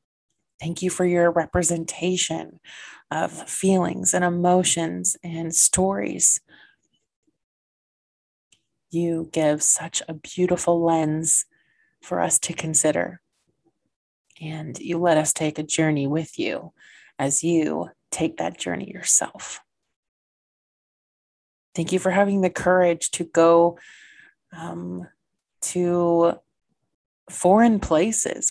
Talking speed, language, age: 100 wpm, English, 30-49